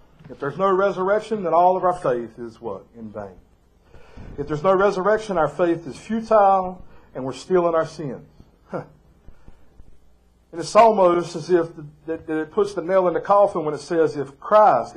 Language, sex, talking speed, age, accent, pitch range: English, male, 185 wpm, 50-69, American, 115-195 Hz